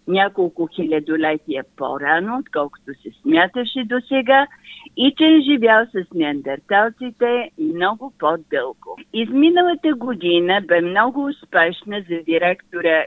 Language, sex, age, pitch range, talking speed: Bulgarian, female, 50-69, 175-250 Hz, 105 wpm